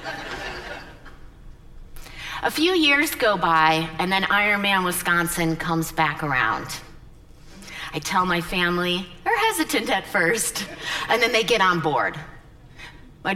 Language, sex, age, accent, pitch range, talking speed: English, female, 40-59, American, 160-180 Hz, 120 wpm